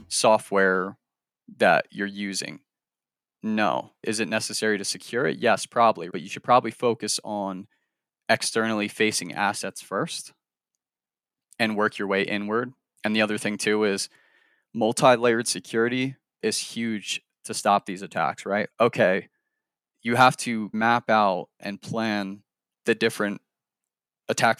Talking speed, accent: 130 wpm, American